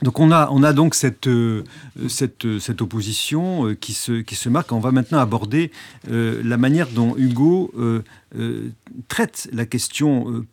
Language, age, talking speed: French, 50-69, 190 wpm